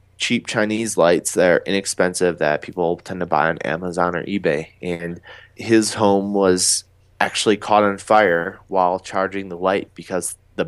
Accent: American